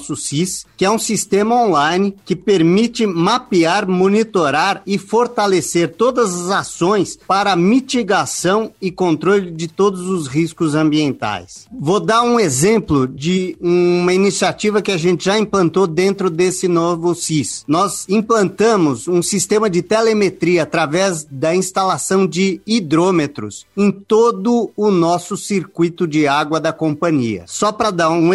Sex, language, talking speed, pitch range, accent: male, Portuguese, 135 wpm, 170-210 Hz, Brazilian